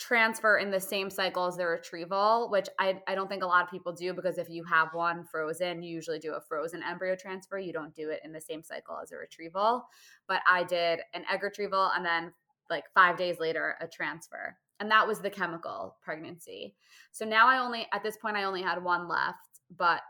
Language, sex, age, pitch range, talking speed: English, female, 20-39, 170-195 Hz, 225 wpm